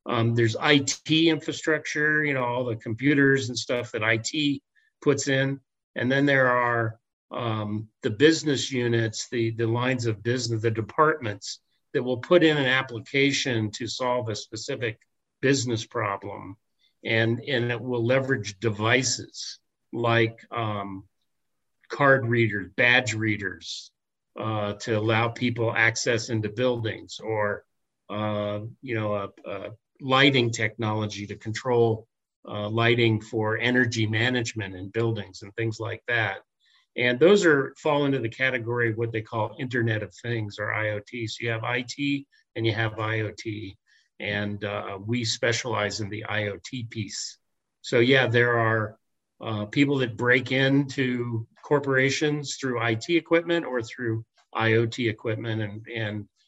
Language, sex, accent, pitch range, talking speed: English, male, American, 110-130 Hz, 140 wpm